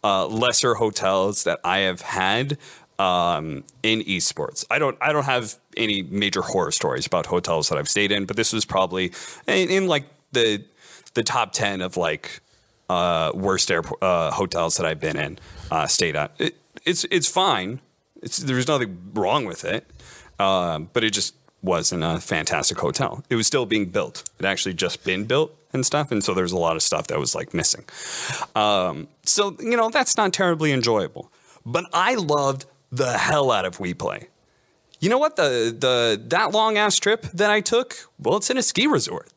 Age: 30-49